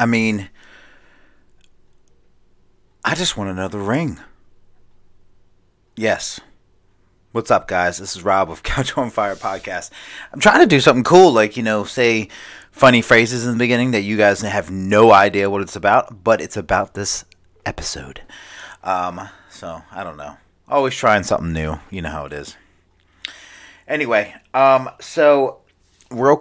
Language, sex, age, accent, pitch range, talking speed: English, male, 30-49, American, 95-120 Hz, 150 wpm